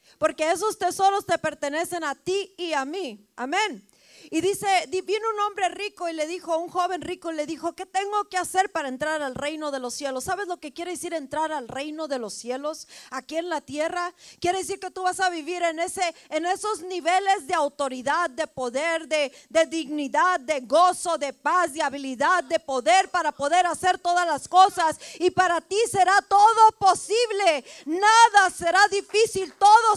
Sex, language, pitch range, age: female, Spanish, 320-395 Hz, 40-59